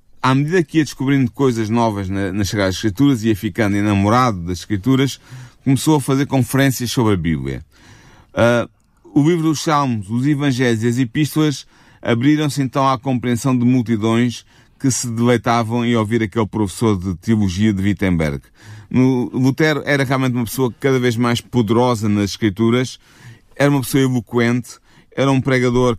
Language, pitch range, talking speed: Portuguese, 110-130 Hz, 150 wpm